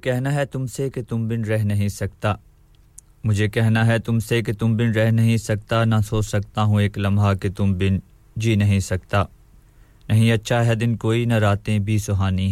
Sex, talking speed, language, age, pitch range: male, 190 wpm, English, 20-39, 100-115 Hz